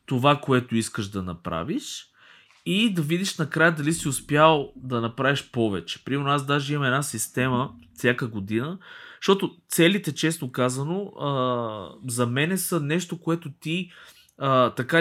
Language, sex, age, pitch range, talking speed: Bulgarian, male, 20-39, 110-165 Hz, 135 wpm